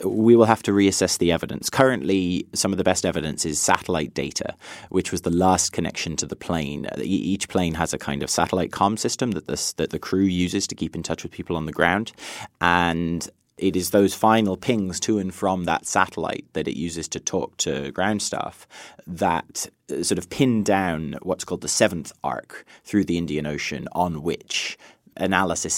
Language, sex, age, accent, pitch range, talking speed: English, male, 30-49, British, 85-110 Hz, 195 wpm